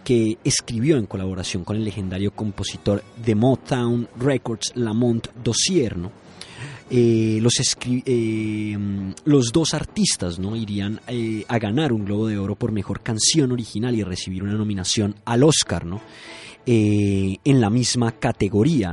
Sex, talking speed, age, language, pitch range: male, 145 wpm, 30-49, Spanish, 105-125 Hz